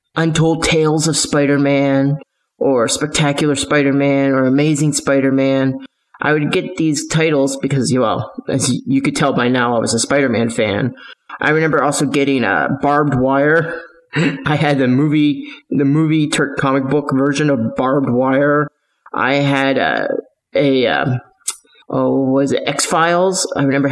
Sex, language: male, English